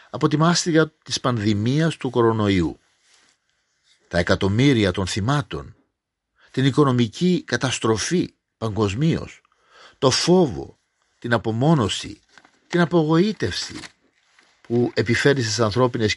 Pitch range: 110-155 Hz